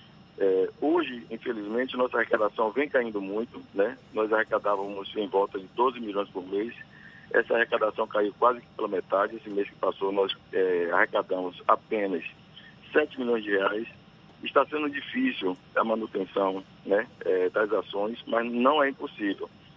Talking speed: 140 wpm